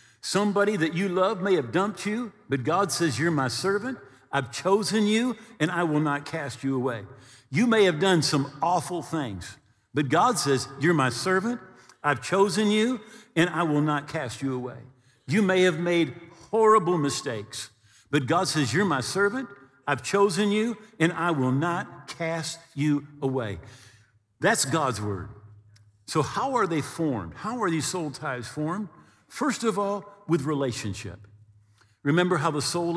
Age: 50-69